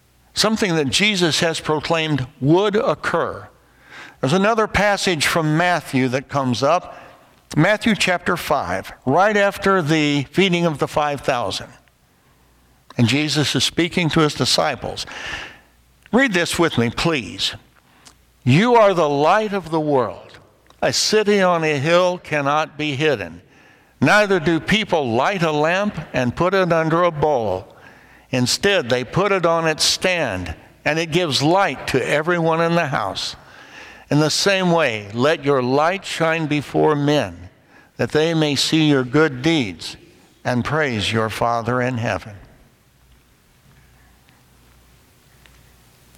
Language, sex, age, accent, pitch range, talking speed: English, male, 60-79, American, 115-165 Hz, 135 wpm